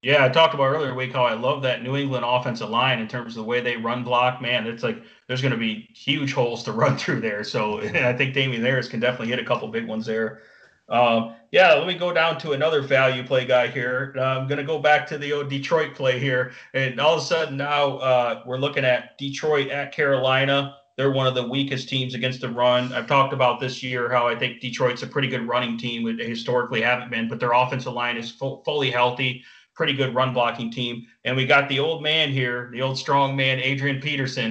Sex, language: male, English